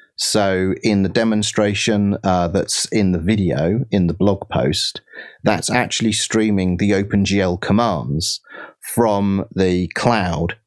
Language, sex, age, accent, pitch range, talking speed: English, male, 30-49, British, 90-105 Hz, 125 wpm